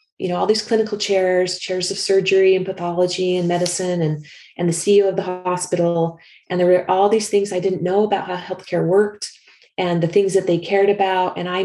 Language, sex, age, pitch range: English, female, 30-49, 160-200 Hz